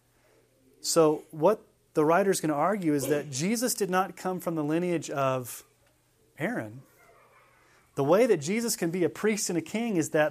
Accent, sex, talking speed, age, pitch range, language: American, male, 180 wpm, 30-49, 150-190 Hz, English